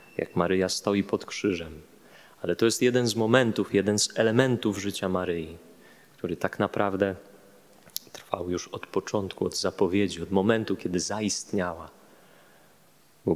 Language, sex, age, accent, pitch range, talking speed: Polish, male, 30-49, native, 90-105 Hz, 135 wpm